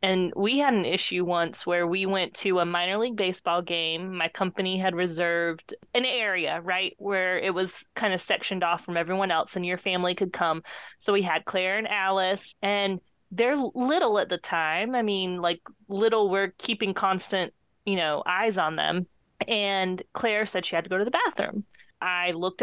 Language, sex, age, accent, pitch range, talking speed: English, female, 20-39, American, 185-230 Hz, 195 wpm